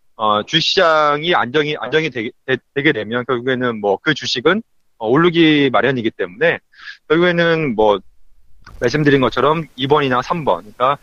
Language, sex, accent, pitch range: Korean, male, native, 130-190 Hz